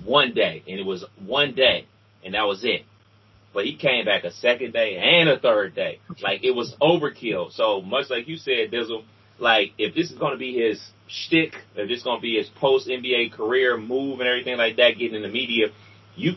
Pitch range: 105-135 Hz